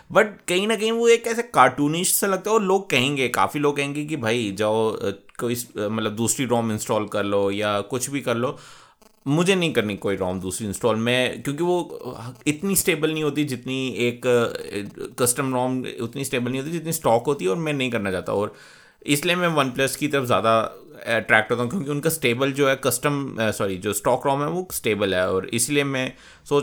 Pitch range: 115-155 Hz